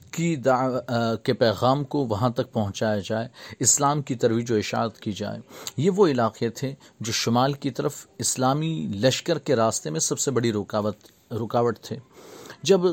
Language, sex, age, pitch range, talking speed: Urdu, male, 40-59, 115-145 Hz, 165 wpm